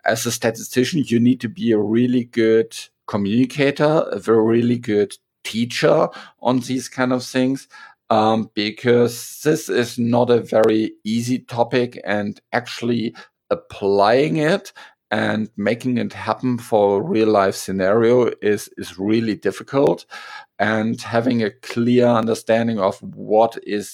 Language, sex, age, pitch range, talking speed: English, male, 50-69, 105-120 Hz, 135 wpm